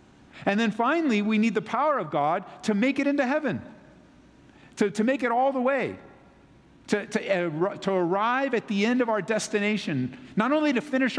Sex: male